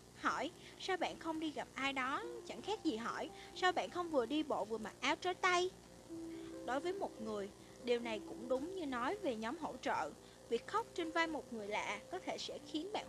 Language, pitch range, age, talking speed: Vietnamese, 255-340 Hz, 20-39, 225 wpm